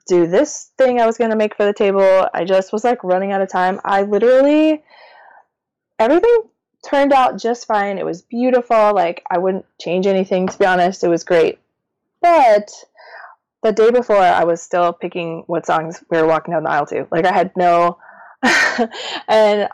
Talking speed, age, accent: 190 wpm, 20-39, American